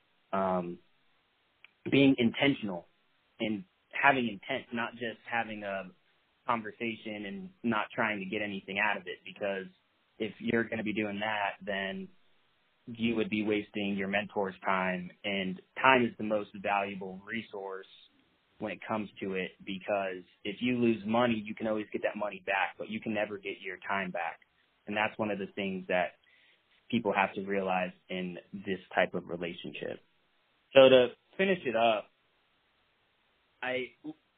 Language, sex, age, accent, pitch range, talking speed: English, male, 20-39, American, 100-120 Hz, 155 wpm